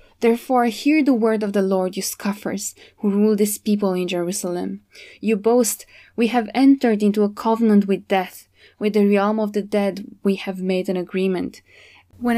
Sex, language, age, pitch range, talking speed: female, English, 20-39, 185-220 Hz, 180 wpm